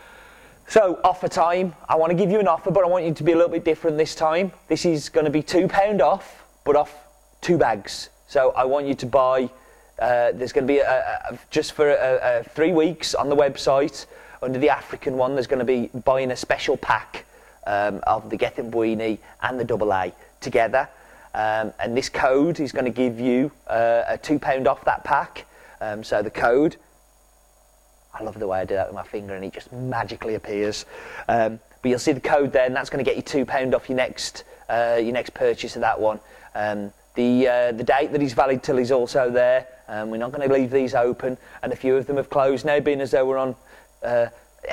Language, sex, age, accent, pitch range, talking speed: English, male, 30-49, British, 110-145 Hz, 225 wpm